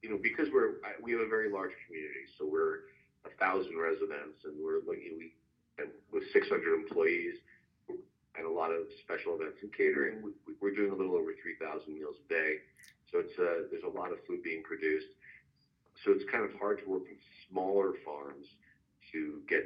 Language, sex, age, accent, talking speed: English, male, 40-59, American, 190 wpm